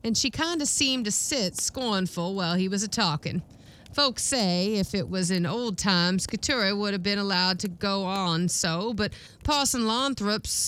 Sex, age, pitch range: female, 40-59, 195-280 Hz